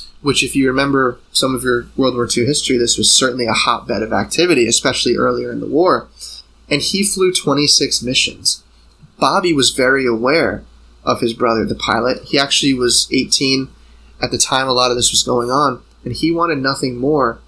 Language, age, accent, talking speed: English, 20-39, American, 190 wpm